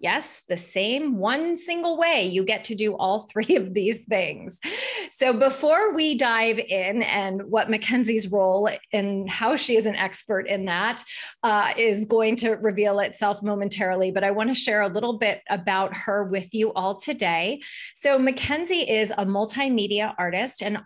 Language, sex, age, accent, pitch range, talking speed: English, female, 30-49, American, 190-245 Hz, 175 wpm